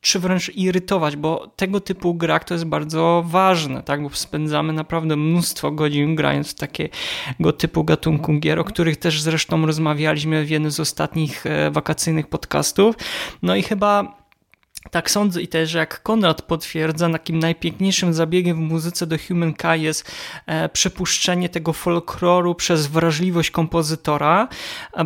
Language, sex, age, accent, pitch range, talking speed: Polish, male, 20-39, native, 160-180 Hz, 145 wpm